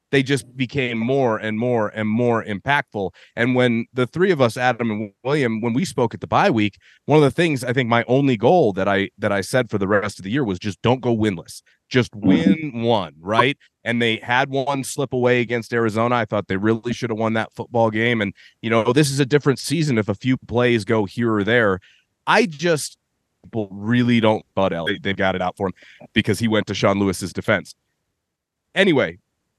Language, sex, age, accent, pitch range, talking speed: English, male, 30-49, American, 105-140 Hz, 220 wpm